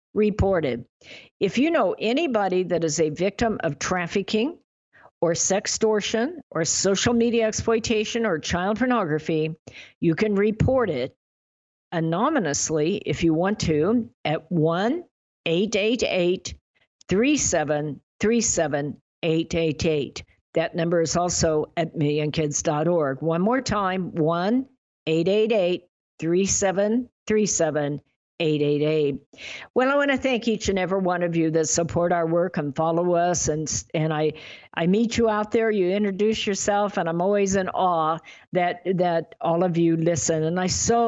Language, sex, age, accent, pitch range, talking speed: English, female, 50-69, American, 165-210 Hz, 130 wpm